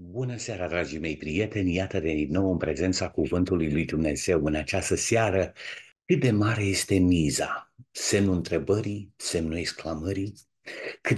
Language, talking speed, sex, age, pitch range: Romanian, 140 wpm, male, 50-69, 95-125 Hz